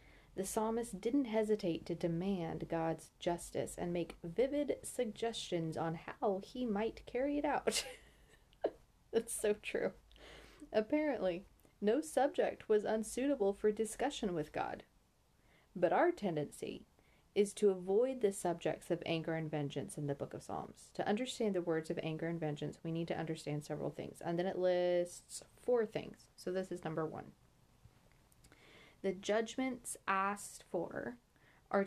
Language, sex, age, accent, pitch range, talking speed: English, female, 30-49, American, 170-220 Hz, 145 wpm